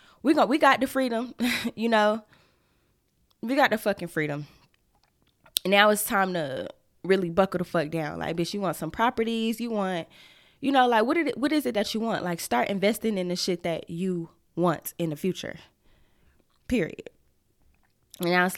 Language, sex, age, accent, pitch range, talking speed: English, female, 10-29, American, 175-230 Hz, 180 wpm